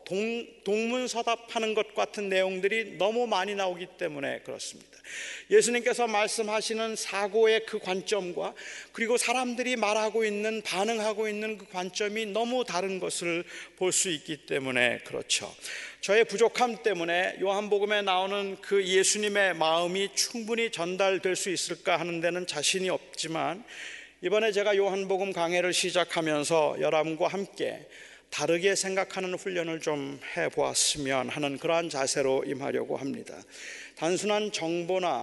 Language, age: Korean, 40-59